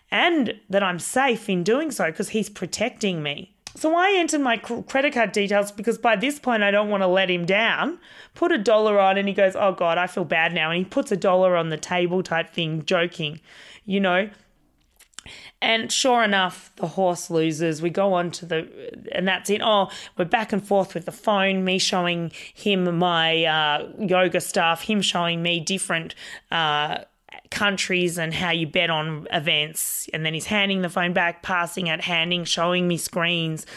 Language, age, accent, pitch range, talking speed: English, 30-49, Australian, 170-210 Hz, 195 wpm